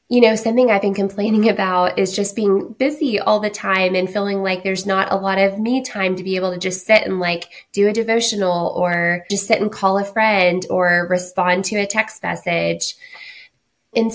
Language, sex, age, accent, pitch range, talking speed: English, female, 20-39, American, 180-225 Hz, 210 wpm